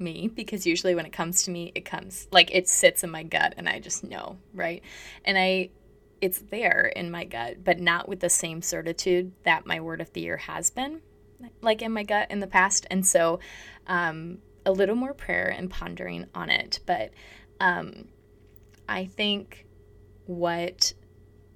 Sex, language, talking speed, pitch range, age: female, English, 180 wpm, 170-195 Hz, 20-39